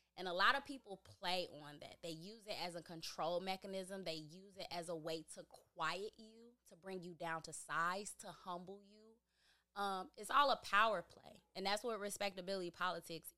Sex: female